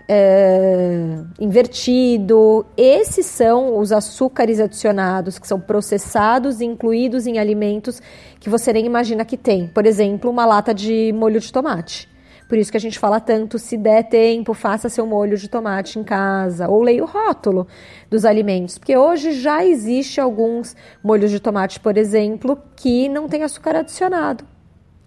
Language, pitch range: Portuguese, 210-250 Hz